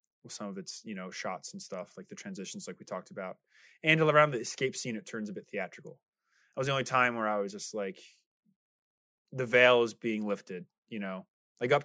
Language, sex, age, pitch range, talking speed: English, male, 20-39, 100-140 Hz, 225 wpm